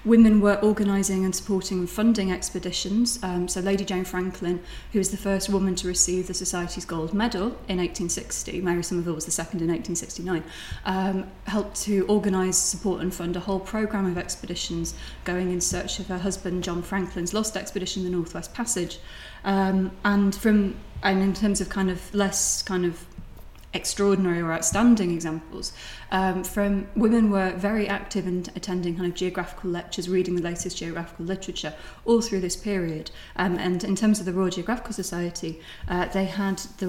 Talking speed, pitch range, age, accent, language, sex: 175 wpm, 175-200 Hz, 20-39, British, English, female